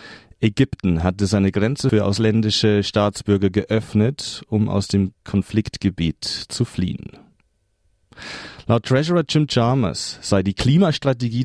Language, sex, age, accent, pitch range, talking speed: German, male, 40-59, German, 100-125 Hz, 110 wpm